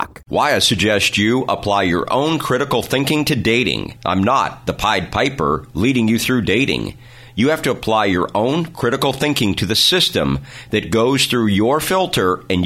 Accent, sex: American, male